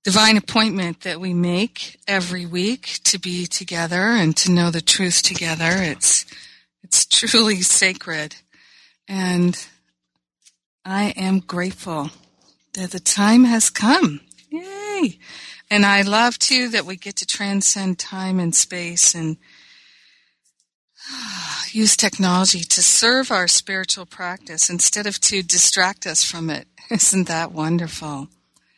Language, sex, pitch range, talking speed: English, female, 165-200 Hz, 125 wpm